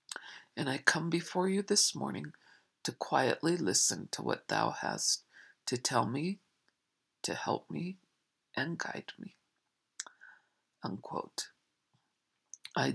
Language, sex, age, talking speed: English, female, 50-69, 110 wpm